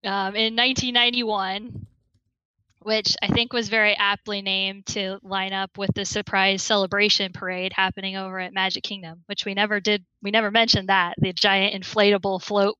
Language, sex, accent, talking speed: English, female, American, 160 wpm